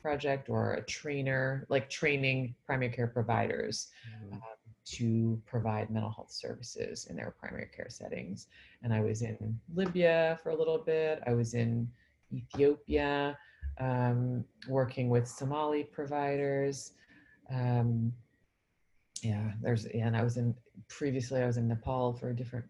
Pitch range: 115-135 Hz